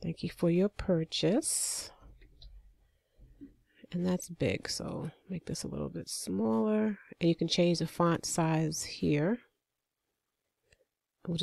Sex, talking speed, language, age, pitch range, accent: female, 125 wpm, English, 30-49, 150-185 Hz, American